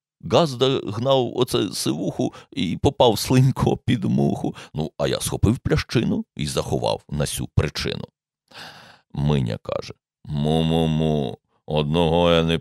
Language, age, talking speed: Ukrainian, 50-69, 125 wpm